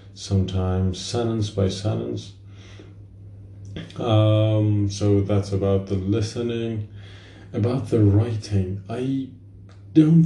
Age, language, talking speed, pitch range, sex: 30-49, English, 90 wpm, 100-115 Hz, male